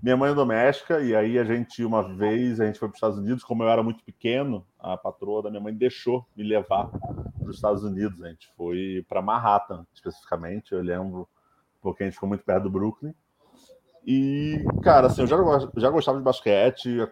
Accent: Brazilian